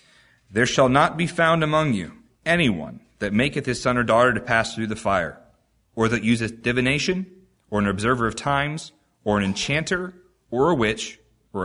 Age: 30-49